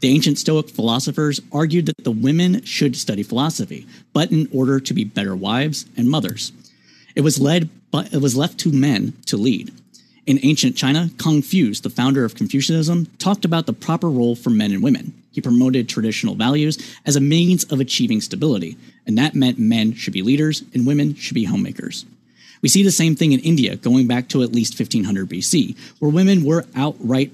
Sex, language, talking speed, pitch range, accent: male, English, 190 wpm, 125-165 Hz, American